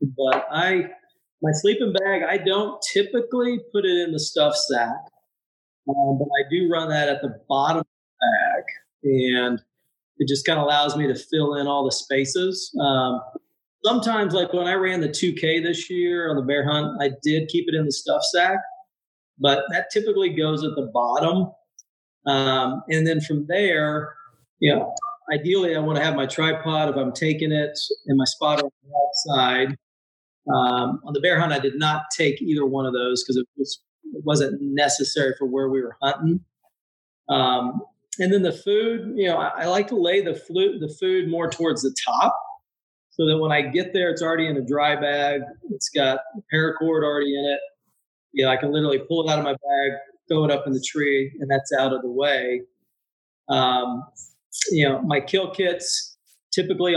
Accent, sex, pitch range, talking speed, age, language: American, male, 140-180 Hz, 190 wpm, 40-59, English